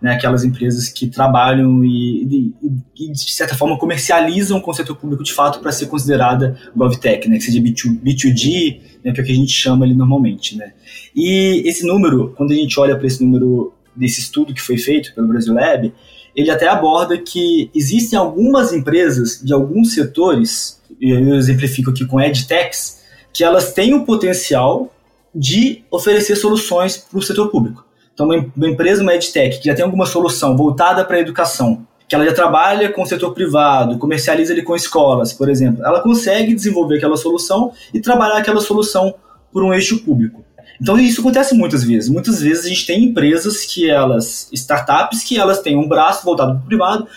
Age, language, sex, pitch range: 20-39, Portuguese, male, 135-190 Hz